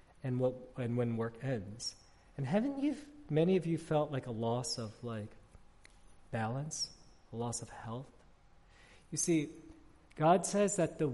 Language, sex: English, male